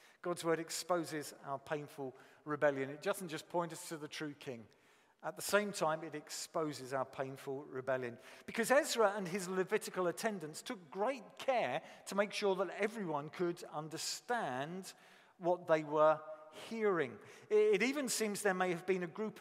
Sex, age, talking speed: male, 50-69, 165 wpm